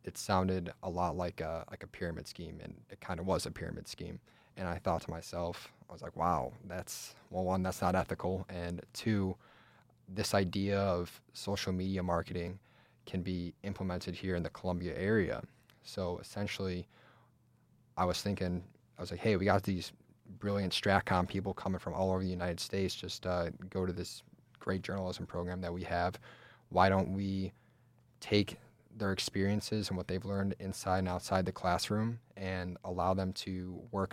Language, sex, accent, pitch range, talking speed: English, male, American, 90-100 Hz, 180 wpm